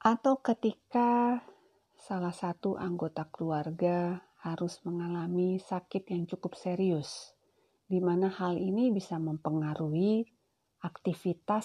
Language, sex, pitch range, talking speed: Indonesian, female, 165-235 Hz, 100 wpm